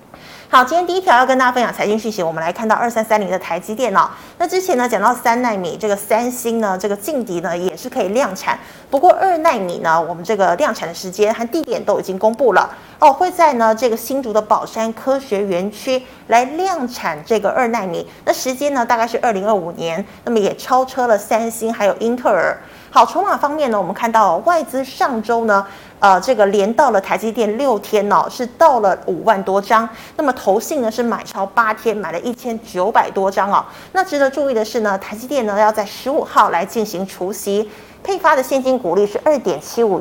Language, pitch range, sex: Chinese, 195-260 Hz, female